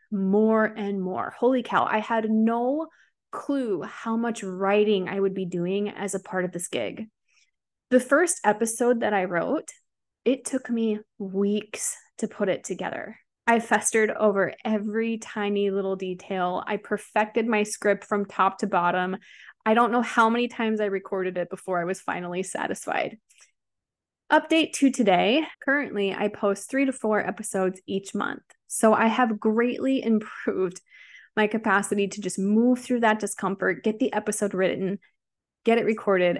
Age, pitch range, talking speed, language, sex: 20-39, 195-230 Hz, 160 wpm, English, female